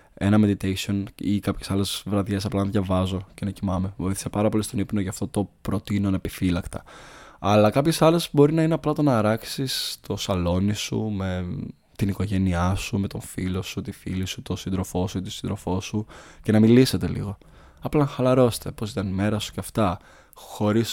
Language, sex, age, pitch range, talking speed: Greek, male, 20-39, 95-110 Hz, 195 wpm